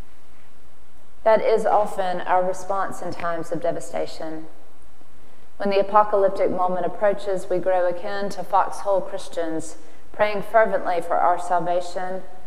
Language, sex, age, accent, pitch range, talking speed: English, female, 30-49, American, 165-195 Hz, 120 wpm